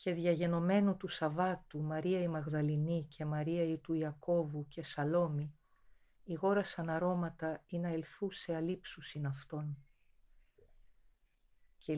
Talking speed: 115 wpm